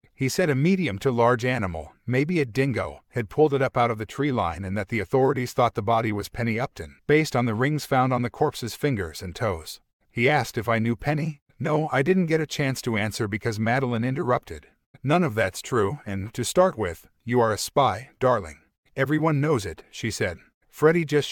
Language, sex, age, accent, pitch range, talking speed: English, male, 50-69, American, 115-145 Hz, 215 wpm